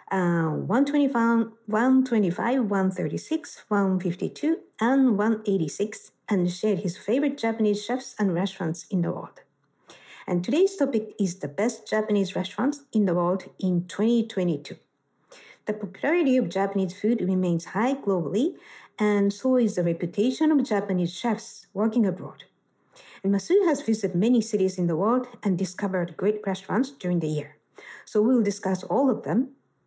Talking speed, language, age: 145 wpm, English, 50-69